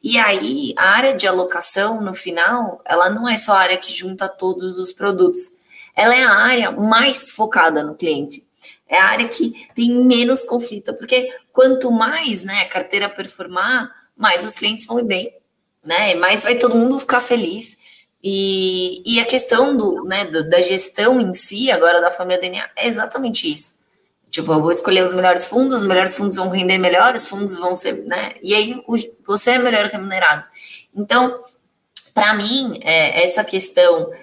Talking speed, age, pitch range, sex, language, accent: 175 wpm, 20-39, 185-245 Hz, female, Portuguese, Brazilian